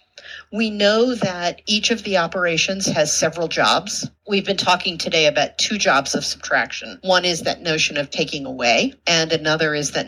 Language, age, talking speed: English, 40-59, 180 wpm